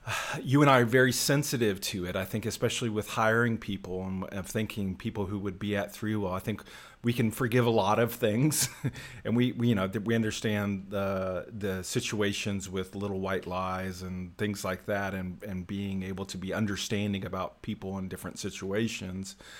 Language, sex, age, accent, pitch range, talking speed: English, male, 40-59, American, 100-120 Hz, 195 wpm